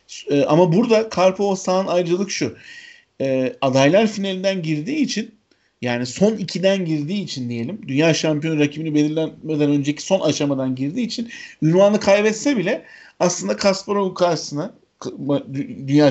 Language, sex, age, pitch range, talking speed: Turkish, male, 50-69, 140-195 Hz, 125 wpm